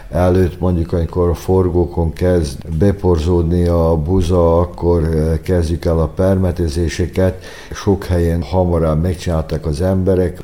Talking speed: 115 wpm